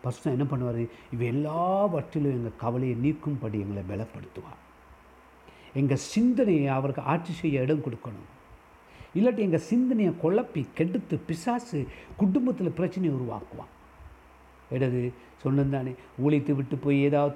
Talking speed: 115 wpm